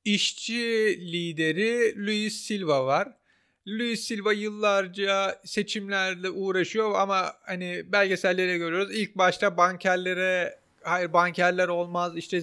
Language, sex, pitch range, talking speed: Turkish, male, 180-225 Hz, 100 wpm